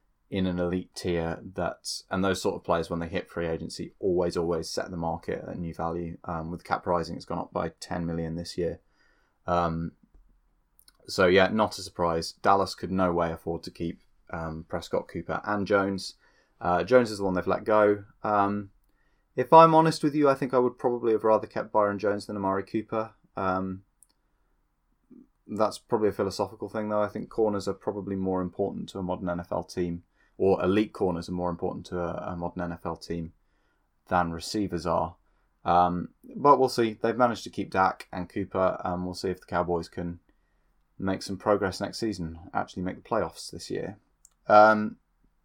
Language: English